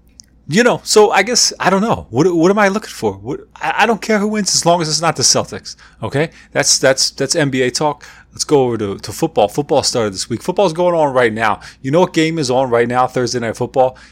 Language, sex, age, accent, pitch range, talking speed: English, male, 30-49, American, 105-150 Hz, 255 wpm